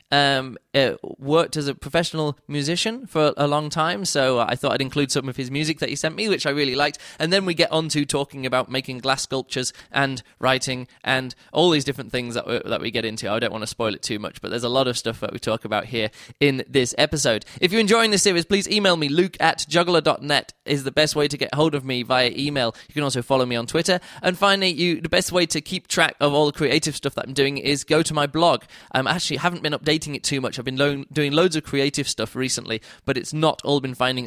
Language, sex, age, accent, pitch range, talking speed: English, male, 20-39, British, 125-155 Hz, 260 wpm